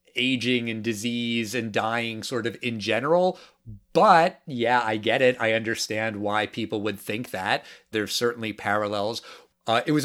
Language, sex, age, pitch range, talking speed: English, male, 30-49, 105-125 Hz, 160 wpm